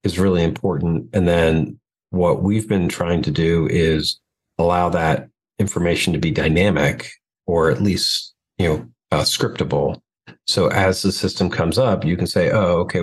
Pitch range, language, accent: 85-100 Hz, English, American